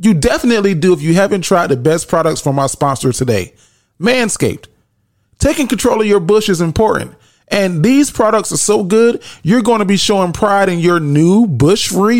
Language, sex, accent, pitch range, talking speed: English, male, American, 160-220 Hz, 185 wpm